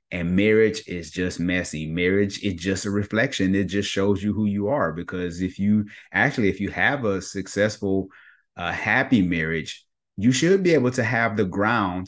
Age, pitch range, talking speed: 30-49, 90-110 Hz, 185 wpm